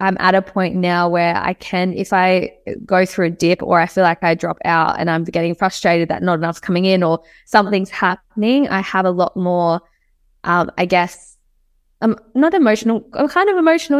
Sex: female